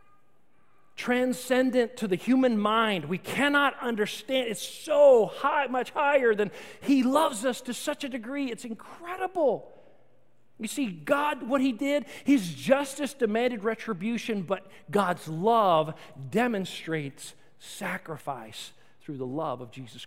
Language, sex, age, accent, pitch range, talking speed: English, male, 40-59, American, 185-265 Hz, 130 wpm